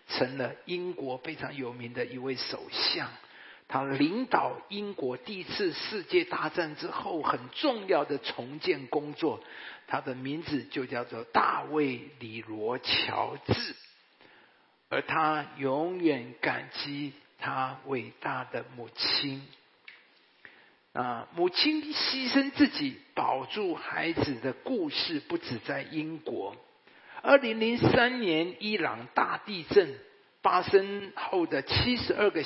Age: 50-69